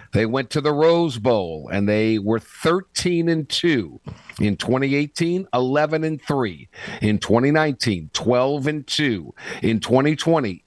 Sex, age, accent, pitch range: male, 50-69, American, 120-155 Hz